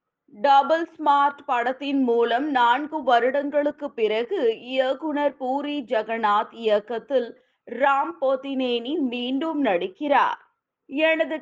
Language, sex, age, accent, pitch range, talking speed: Tamil, female, 30-49, native, 255-310 Hz, 85 wpm